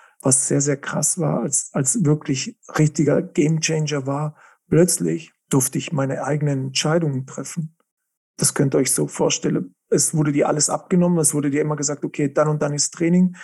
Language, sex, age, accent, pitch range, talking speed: German, male, 40-59, German, 145-175 Hz, 180 wpm